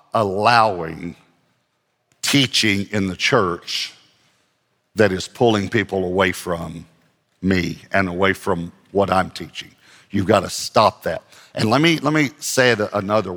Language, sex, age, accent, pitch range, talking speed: English, male, 50-69, American, 95-125 Hz, 140 wpm